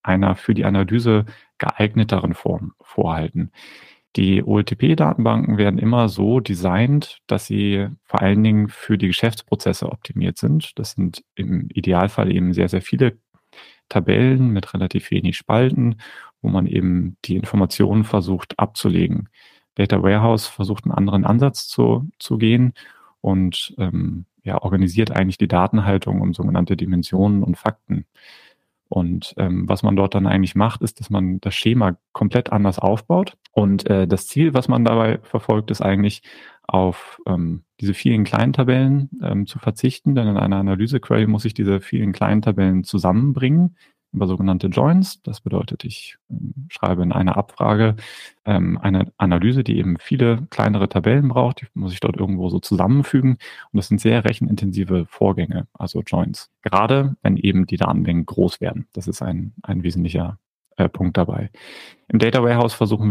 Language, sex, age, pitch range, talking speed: German, male, 30-49, 95-115 Hz, 155 wpm